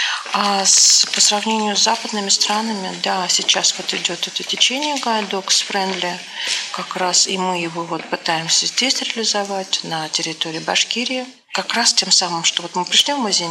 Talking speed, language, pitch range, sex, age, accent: 165 wpm, Russian, 175-215 Hz, female, 40-59, native